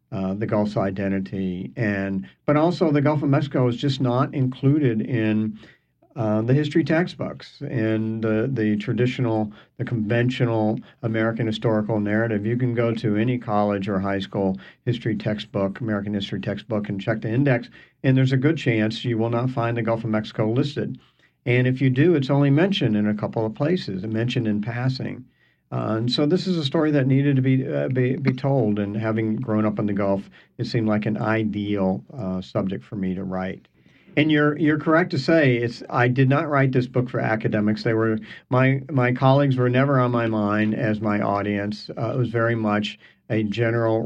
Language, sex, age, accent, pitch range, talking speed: English, male, 50-69, American, 105-130 Hz, 195 wpm